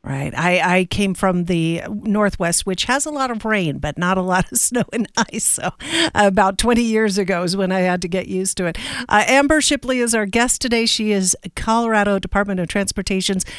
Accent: American